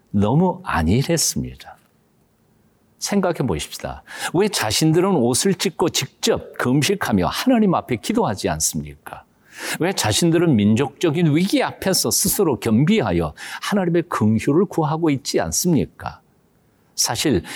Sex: male